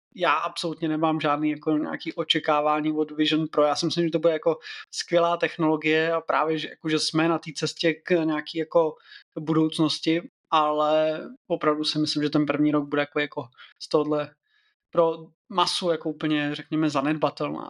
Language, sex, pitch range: Czech, male, 150-165 Hz